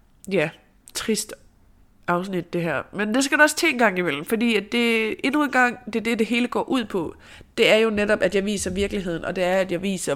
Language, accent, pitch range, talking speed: Danish, native, 170-215 Hz, 235 wpm